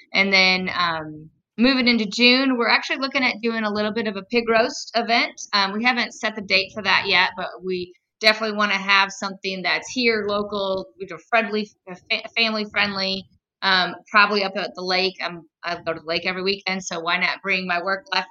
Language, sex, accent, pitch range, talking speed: English, female, American, 180-220 Hz, 205 wpm